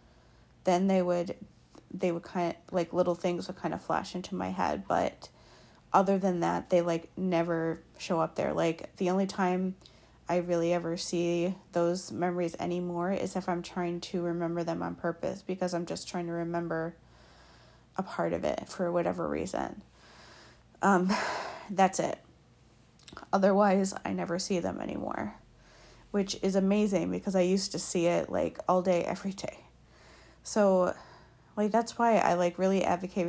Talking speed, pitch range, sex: 165 wpm, 170-190 Hz, female